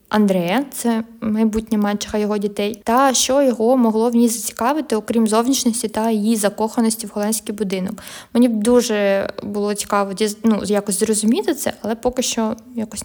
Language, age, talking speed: Ukrainian, 20-39, 155 wpm